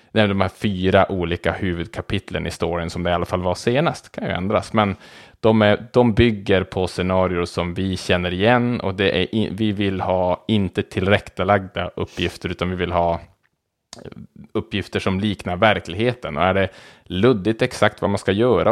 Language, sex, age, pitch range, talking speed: Swedish, male, 20-39, 90-110 Hz, 185 wpm